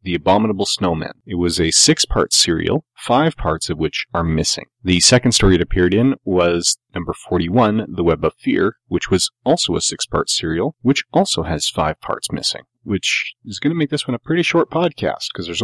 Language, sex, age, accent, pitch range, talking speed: English, male, 30-49, American, 85-105 Hz, 200 wpm